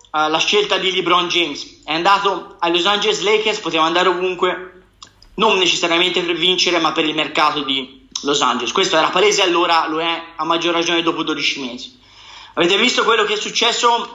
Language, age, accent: Italian, 30-49, native